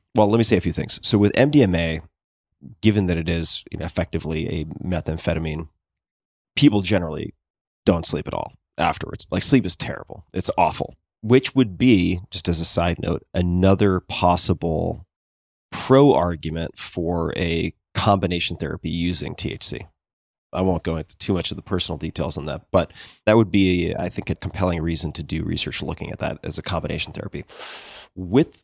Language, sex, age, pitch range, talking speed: English, male, 30-49, 85-105 Hz, 165 wpm